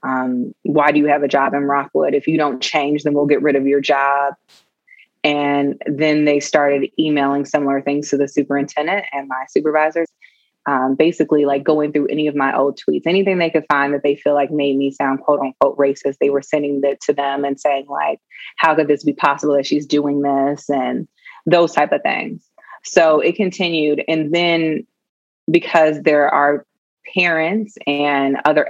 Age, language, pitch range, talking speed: 20-39, English, 140-160 Hz, 190 wpm